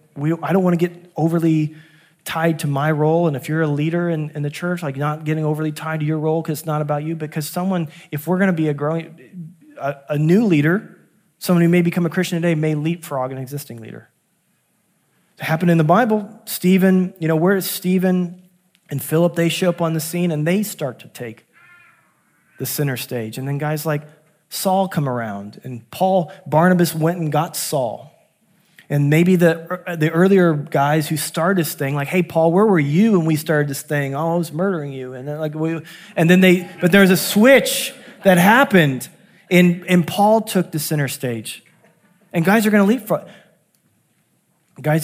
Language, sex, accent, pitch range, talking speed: English, male, American, 150-180 Hz, 205 wpm